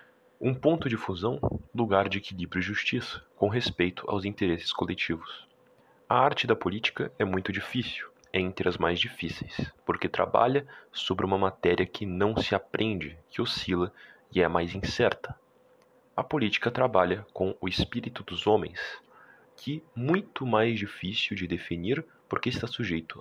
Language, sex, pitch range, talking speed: Portuguese, male, 90-120 Hz, 155 wpm